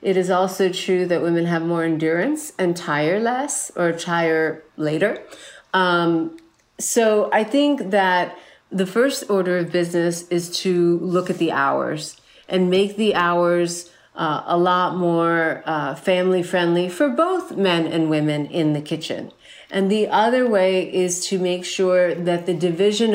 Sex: female